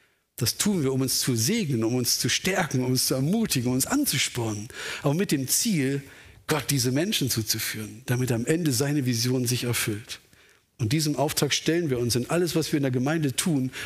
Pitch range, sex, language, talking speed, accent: 120-155 Hz, male, German, 205 wpm, German